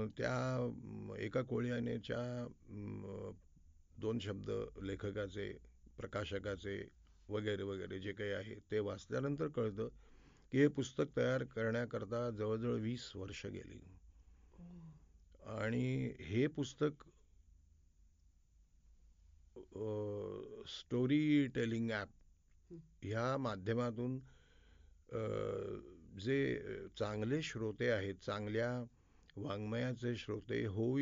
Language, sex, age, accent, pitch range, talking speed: Marathi, male, 50-69, native, 95-125 Hz, 75 wpm